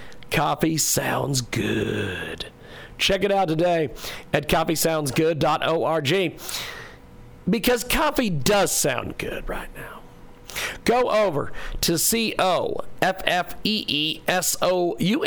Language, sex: English, male